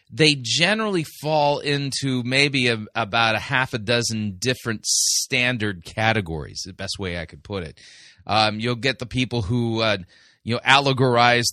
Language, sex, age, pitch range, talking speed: English, male, 30-49, 110-135 Hz, 165 wpm